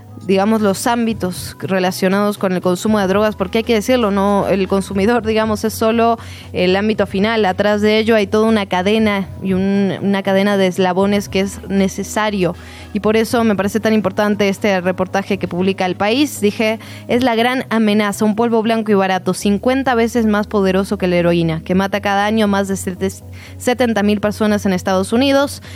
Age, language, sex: 20-39, Spanish, female